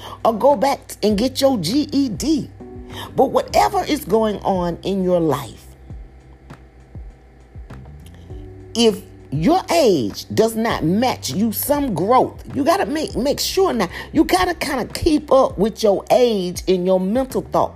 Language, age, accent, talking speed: English, 40-59, American, 150 wpm